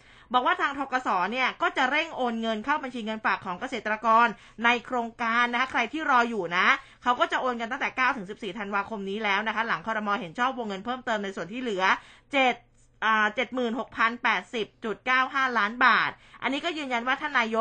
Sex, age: female, 20-39